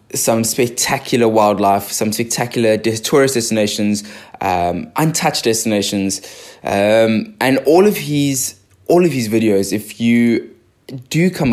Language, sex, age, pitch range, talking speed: English, male, 20-39, 100-120 Hz, 120 wpm